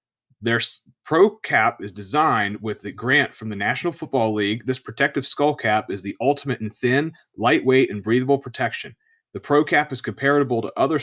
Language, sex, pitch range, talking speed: English, male, 110-140 Hz, 180 wpm